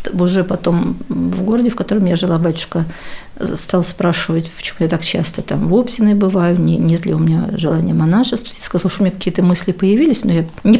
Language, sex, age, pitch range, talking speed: Russian, female, 50-69, 170-215 Hz, 195 wpm